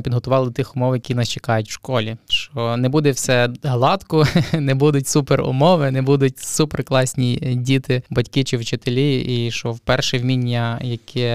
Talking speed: 165 wpm